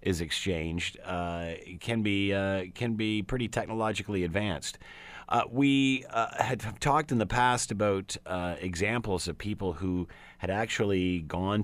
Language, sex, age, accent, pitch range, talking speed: English, male, 40-59, American, 90-110 Hz, 145 wpm